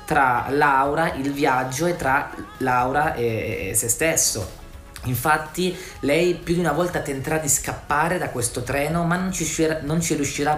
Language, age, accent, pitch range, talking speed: Italian, 30-49, native, 120-160 Hz, 165 wpm